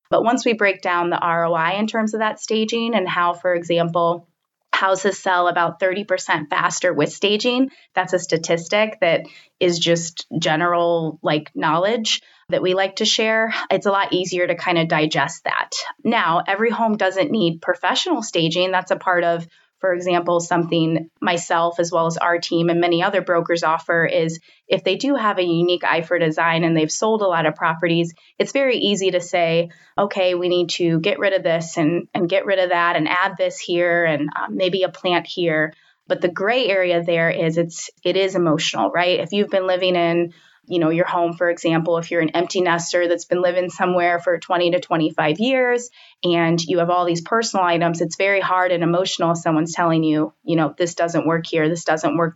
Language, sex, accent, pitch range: English, female, American, 165-185 Hz